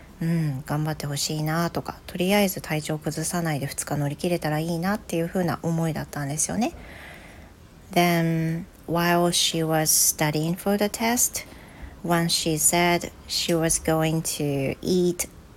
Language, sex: Japanese, female